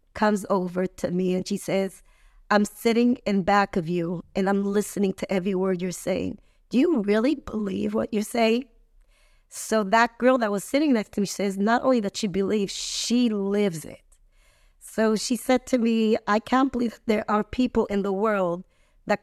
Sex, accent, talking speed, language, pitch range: female, American, 190 wpm, English, 195-235 Hz